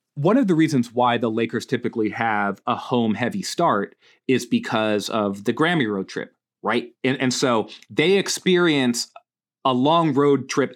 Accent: American